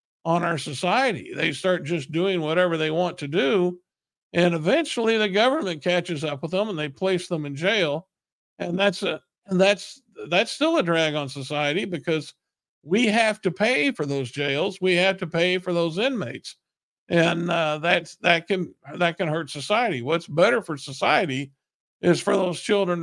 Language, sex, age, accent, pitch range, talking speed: English, male, 50-69, American, 150-190 Hz, 180 wpm